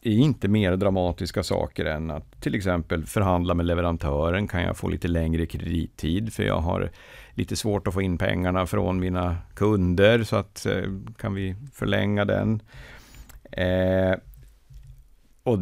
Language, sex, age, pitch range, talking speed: Swedish, male, 50-69, 85-110 Hz, 140 wpm